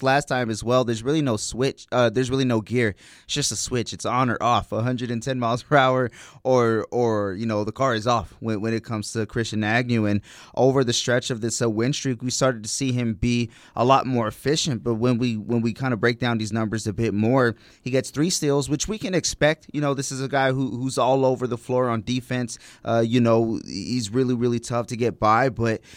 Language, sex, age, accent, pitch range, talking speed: English, male, 20-39, American, 115-135 Hz, 245 wpm